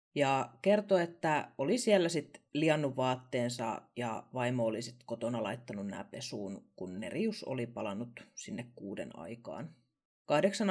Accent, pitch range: native, 125-180 Hz